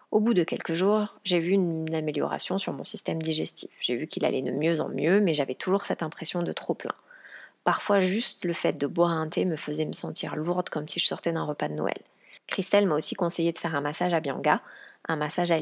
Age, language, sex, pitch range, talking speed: 30-49, French, female, 155-180 Hz, 240 wpm